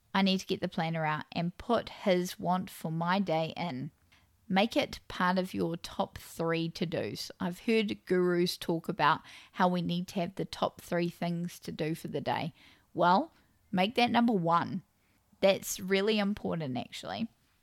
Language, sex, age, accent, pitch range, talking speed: English, female, 10-29, Australian, 175-210 Hz, 175 wpm